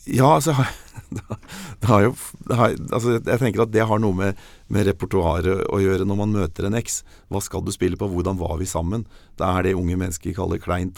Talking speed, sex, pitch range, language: 200 wpm, male, 85-100 Hz, English